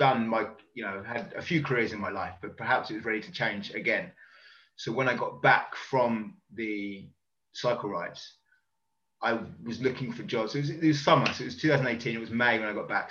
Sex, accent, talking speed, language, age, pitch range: male, British, 220 wpm, English, 20-39, 105-135 Hz